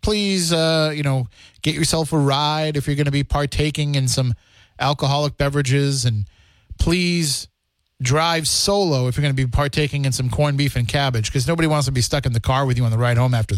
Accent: American